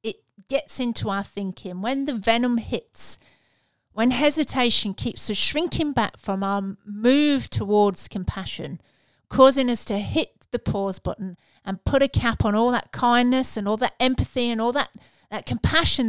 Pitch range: 195-250 Hz